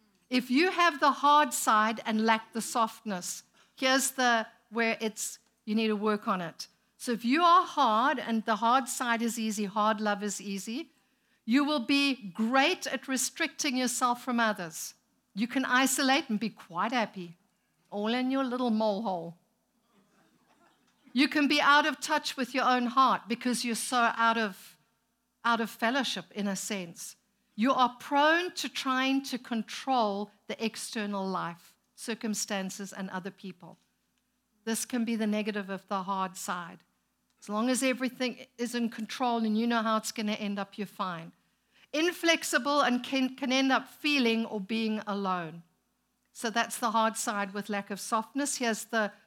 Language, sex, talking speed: English, female, 170 wpm